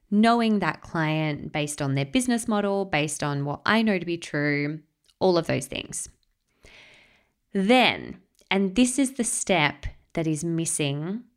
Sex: female